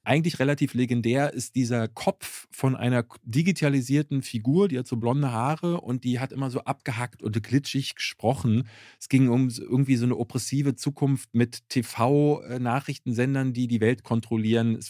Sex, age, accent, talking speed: male, 40-59, German, 155 wpm